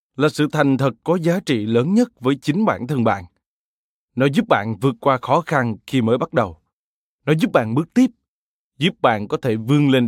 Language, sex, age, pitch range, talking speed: Vietnamese, male, 20-39, 120-170 Hz, 215 wpm